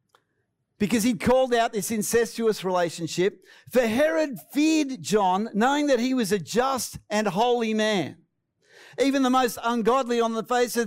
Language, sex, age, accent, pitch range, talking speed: English, male, 50-69, Australian, 210-260 Hz, 155 wpm